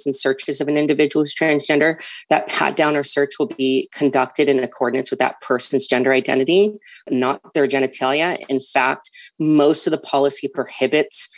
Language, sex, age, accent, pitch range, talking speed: English, female, 30-49, American, 130-150 Hz, 165 wpm